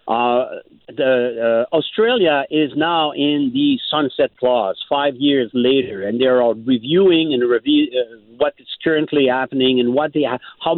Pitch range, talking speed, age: 125-155 Hz, 165 wpm, 50-69